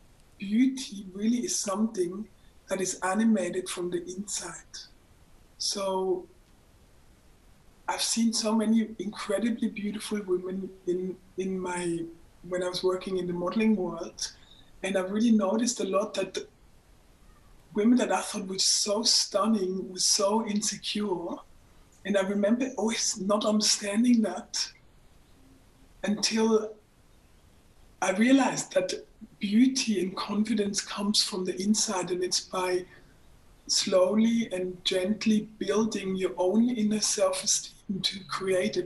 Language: English